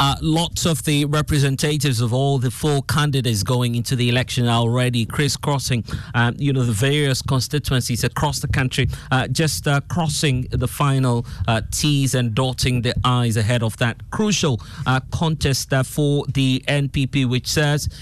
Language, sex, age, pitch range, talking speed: English, male, 30-49, 120-145 Hz, 165 wpm